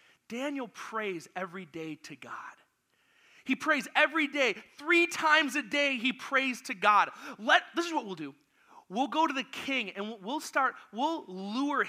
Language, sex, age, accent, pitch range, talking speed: English, male, 30-49, American, 195-280 Hz, 165 wpm